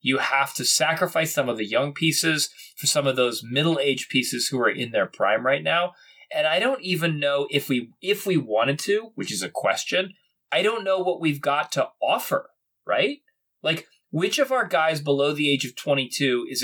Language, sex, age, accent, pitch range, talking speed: English, male, 20-39, American, 130-165 Hz, 215 wpm